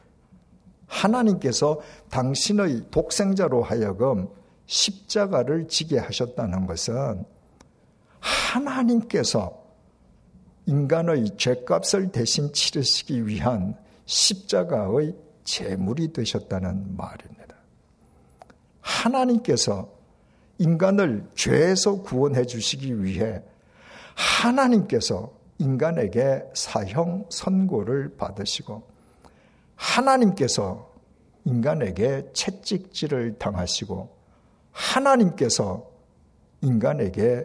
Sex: male